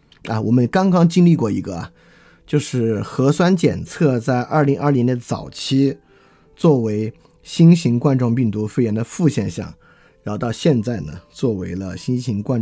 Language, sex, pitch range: Chinese, male, 110-155 Hz